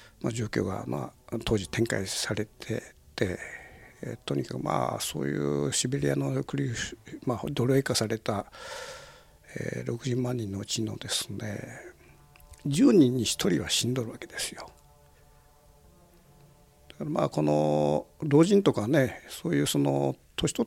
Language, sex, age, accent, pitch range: Japanese, male, 60-79, native, 90-135 Hz